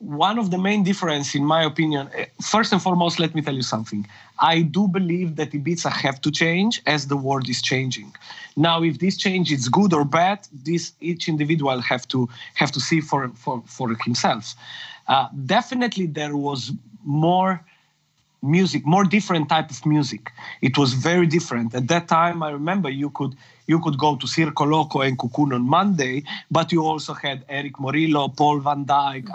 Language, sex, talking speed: English, male, 185 wpm